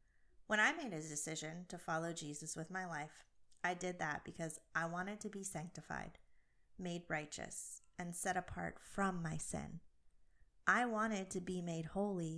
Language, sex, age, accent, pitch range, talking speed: English, female, 30-49, American, 160-200 Hz, 165 wpm